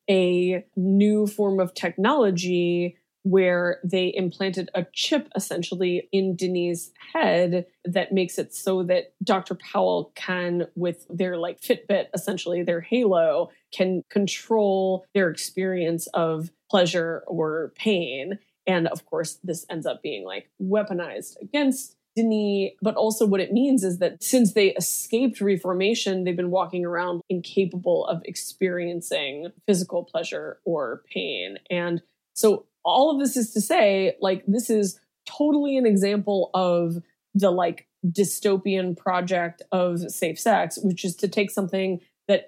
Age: 20-39